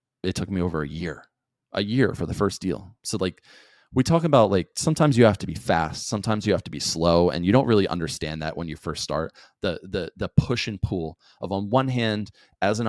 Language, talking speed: English, 240 wpm